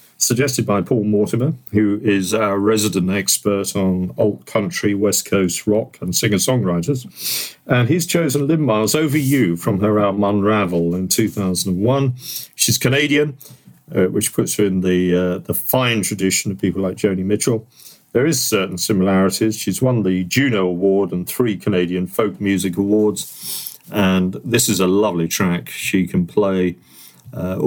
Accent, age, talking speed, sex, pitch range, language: British, 50-69, 155 wpm, male, 90-125 Hz, English